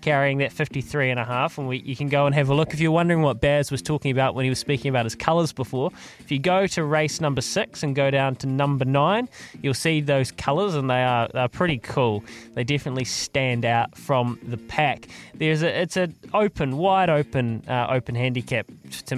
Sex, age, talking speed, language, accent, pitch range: male, 20-39, 220 wpm, English, Australian, 125-160 Hz